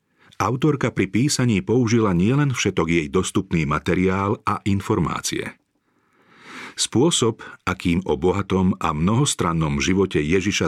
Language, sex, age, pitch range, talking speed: Slovak, male, 40-59, 85-110 Hz, 105 wpm